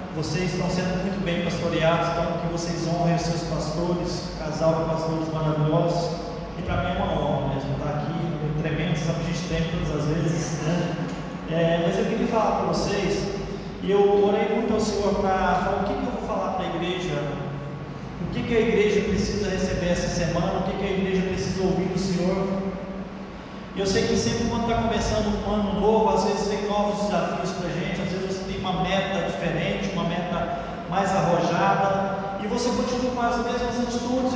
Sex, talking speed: male, 190 wpm